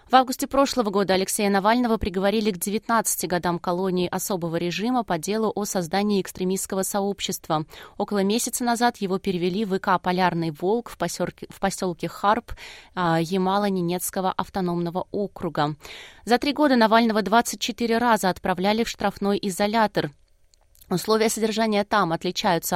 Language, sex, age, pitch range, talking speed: Russian, female, 20-39, 185-220 Hz, 130 wpm